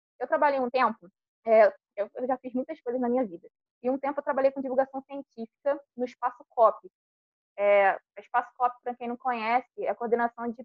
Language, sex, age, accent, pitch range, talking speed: Portuguese, female, 20-39, Brazilian, 235-300 Hz, 205 wpm